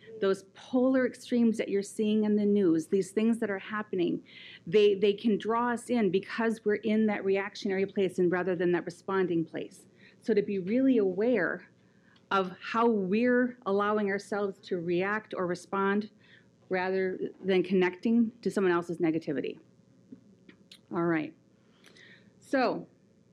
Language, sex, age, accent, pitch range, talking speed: English, female, 40-59, American, 185-215 Hz, 145 wpm